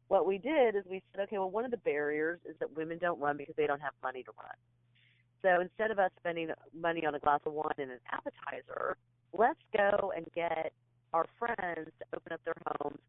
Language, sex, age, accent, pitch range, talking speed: English, female, 40-59, American, 125-170 Hz, 225 wpm